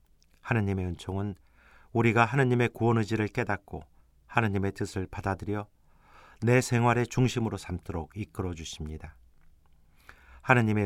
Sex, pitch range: male, 80-110 Hz